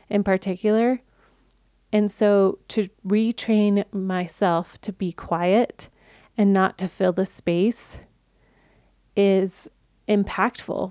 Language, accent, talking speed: English, American, 100 wpm